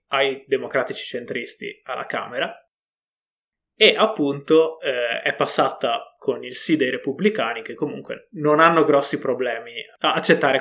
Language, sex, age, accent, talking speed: Italian, male, 20-39, native, 130 wpm